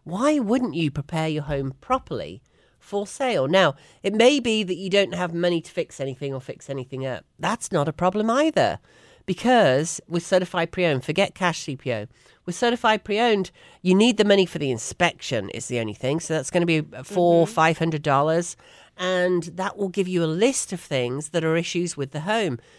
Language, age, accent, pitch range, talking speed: English, 40-59, British, 150-215 Hz, 195 wpm